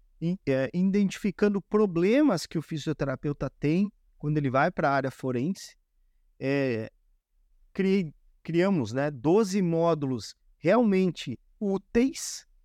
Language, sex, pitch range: Portuguese, male, 130-195 Hz